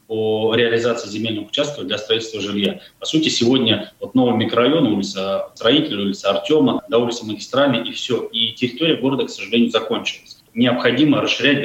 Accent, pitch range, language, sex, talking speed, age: native, 115-140 Hz, Russian, male, 155 wpm, 20-39